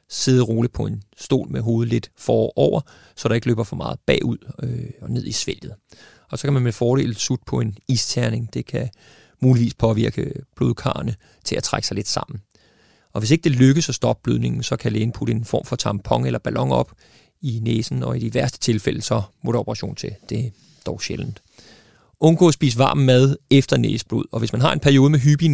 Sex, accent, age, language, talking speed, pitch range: male, native, 30-49, Danish, 210 wpm, 110-135 Hz